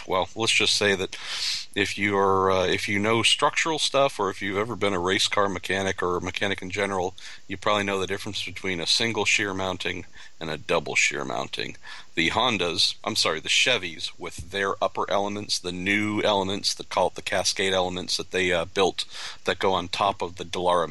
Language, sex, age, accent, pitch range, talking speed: English, male, 40-59, American, 90-110 Hz, 210 wpm